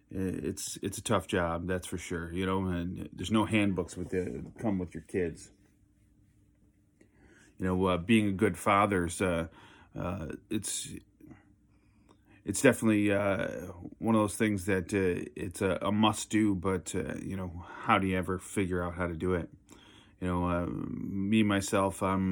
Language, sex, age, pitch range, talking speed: English, male, 30-49, 90-100 Hz, 170 wpm